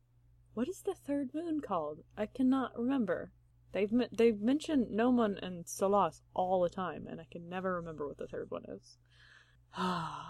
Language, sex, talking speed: English, female, 175 wpm